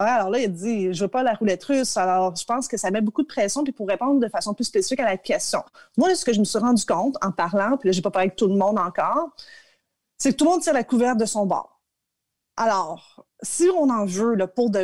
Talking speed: 290 wpm